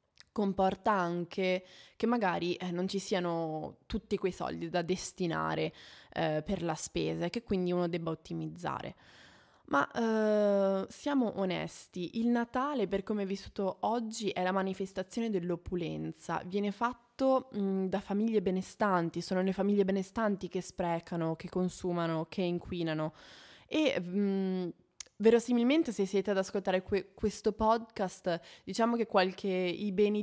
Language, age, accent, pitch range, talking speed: Italian, 20-39, native, 180-220 Hz, 135 wpm